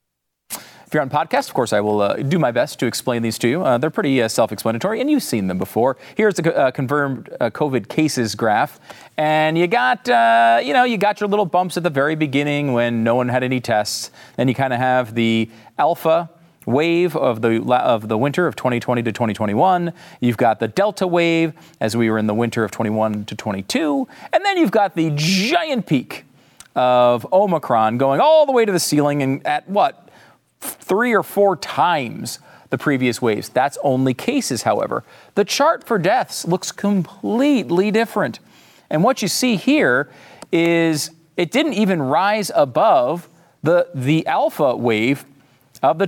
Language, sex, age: English, male, 40-59